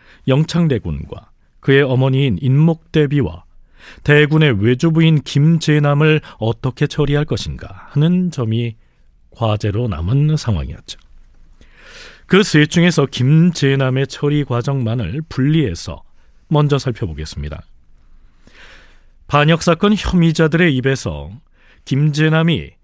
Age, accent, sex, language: 40-59, native, male, Korean